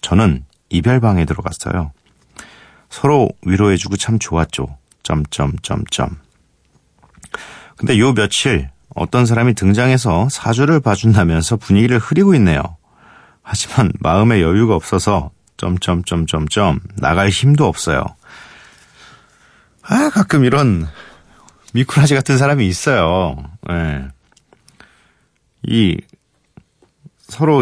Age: 40-59